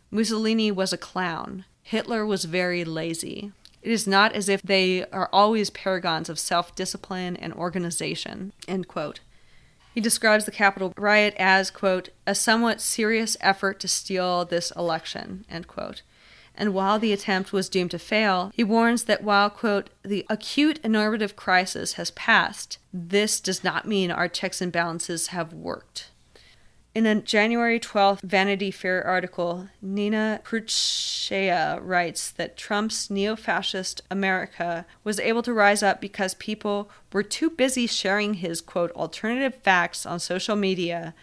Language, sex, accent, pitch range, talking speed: English, female, American, 180-210 Hz, 150 wpm